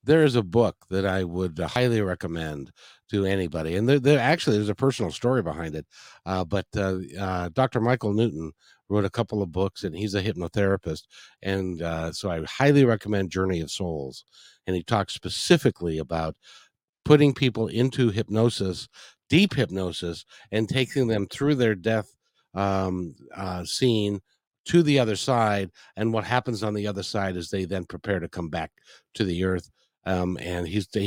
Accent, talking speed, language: American, 175 wpm, English